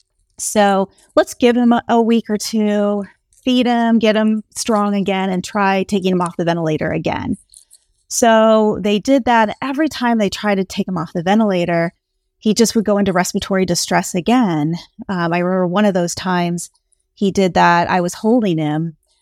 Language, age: English, 30-49